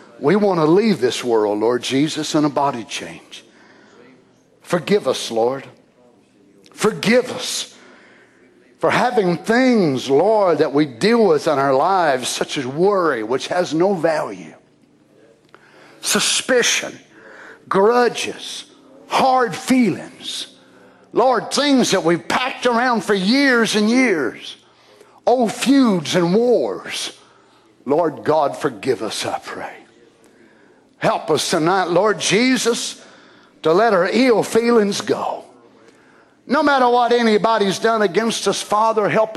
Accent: American